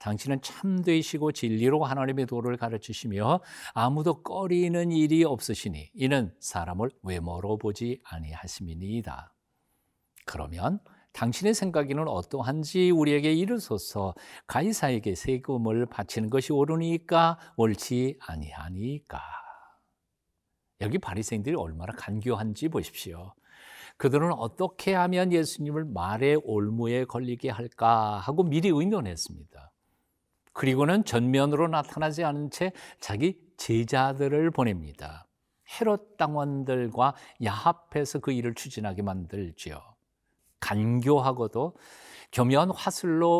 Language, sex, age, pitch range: Korean, male, 60-79, 105-155 Hz